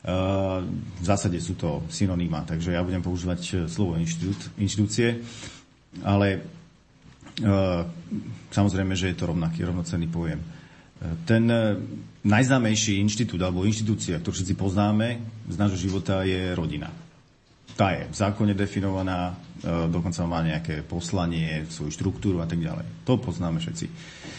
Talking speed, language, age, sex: 130 wpm, Slovak, 40-59, male